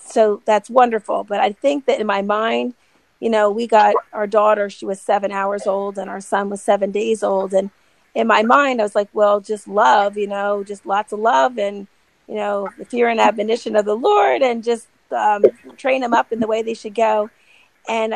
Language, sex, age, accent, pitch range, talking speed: English, female, 40-59, American, 205-245 Hz, 220 wpm